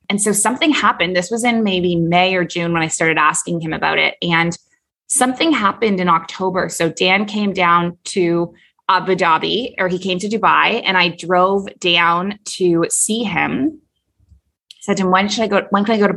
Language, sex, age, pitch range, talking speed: English, female, 20-39, 170-200 Hz, 200 wpm